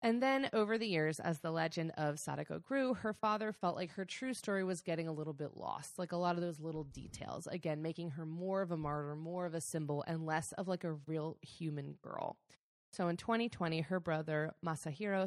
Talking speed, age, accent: 220 wpm, 20-39, American